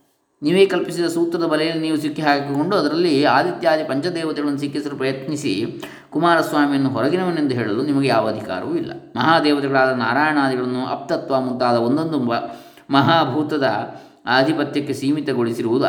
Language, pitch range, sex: Kannada, 120-155 Hz, male